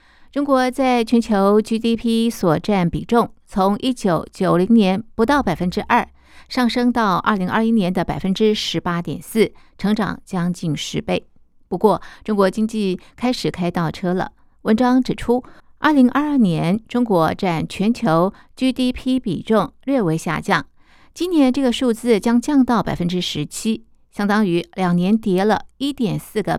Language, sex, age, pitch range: Chinese, female, 50-69, 175-240 Hz